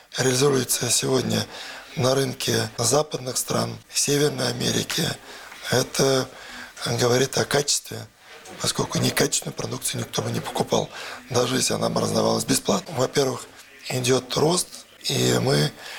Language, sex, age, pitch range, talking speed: Russian, male, 20-39, 115-140 Hz, 110 wpm